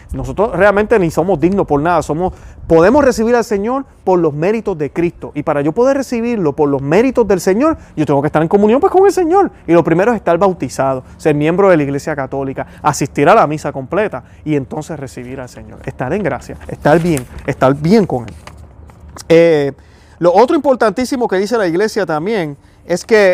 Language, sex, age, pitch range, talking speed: Spanish, male, 30-49, 150-205 Hz, 200 wpm